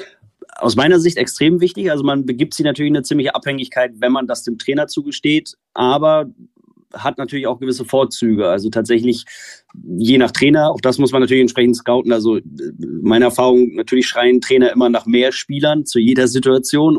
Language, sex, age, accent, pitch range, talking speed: German, male, 30-49, German, 115-130 Hz, 175 wpm